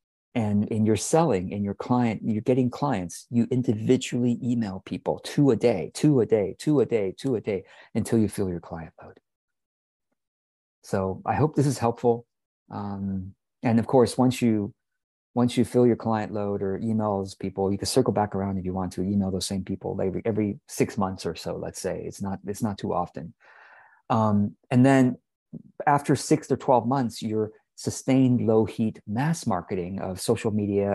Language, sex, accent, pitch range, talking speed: English, male, American, 100-125 Hz, 195 wpm